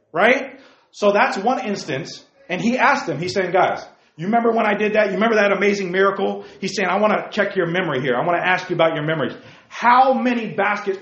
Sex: male